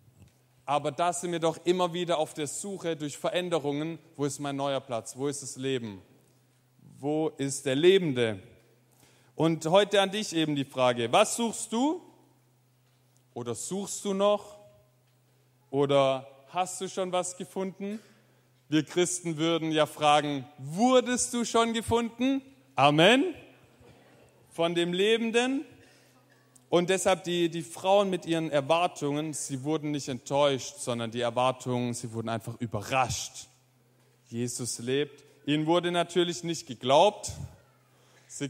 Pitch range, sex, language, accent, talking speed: 125-170 Hz, male, German, German, 130 wpm